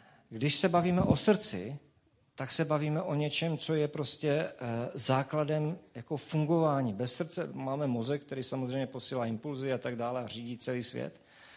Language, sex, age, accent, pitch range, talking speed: Czech, male, 50-69, native, 125-155 Hz, 160 wpm